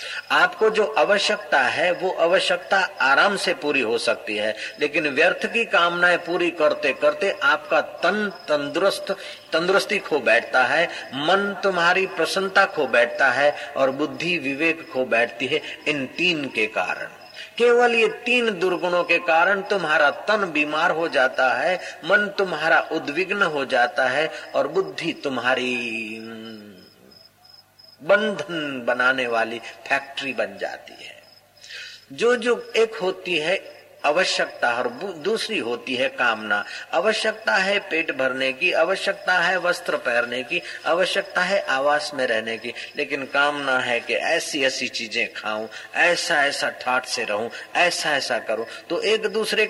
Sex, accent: male, native